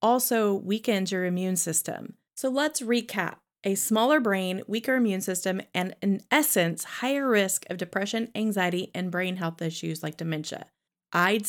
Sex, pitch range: female, 180-245 Hz